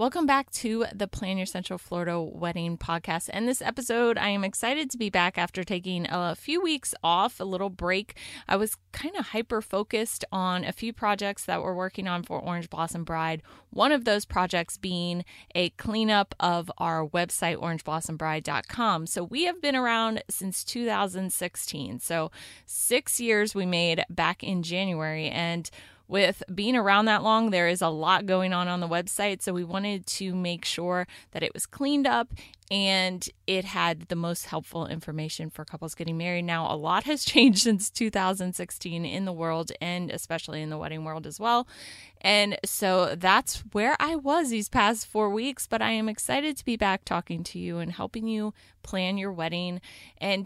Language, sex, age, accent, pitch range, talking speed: English, female, 20-39, American, 170-215 Hz, 185 wpm